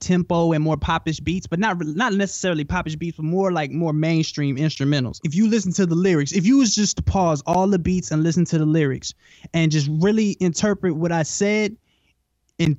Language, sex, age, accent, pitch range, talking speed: English, male, 20-39, American, 160-195 Hz, 210 wpm